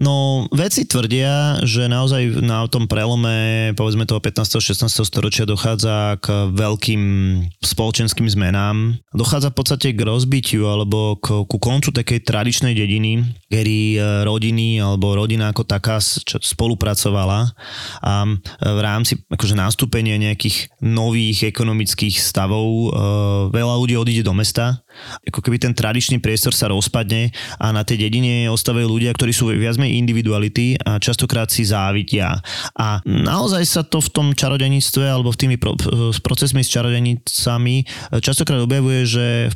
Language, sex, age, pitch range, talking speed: Slovak, male, 20-39, 105-125 Hz, 140 wpm